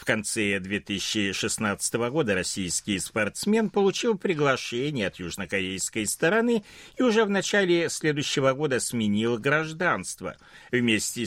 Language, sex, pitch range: Russian, male, 110-175 Hz